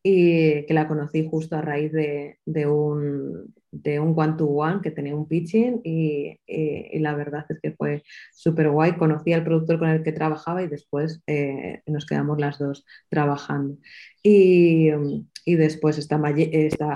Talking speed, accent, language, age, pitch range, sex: 170 wpm, Spanish, Spanish, 20-39, 150-170 Hz, female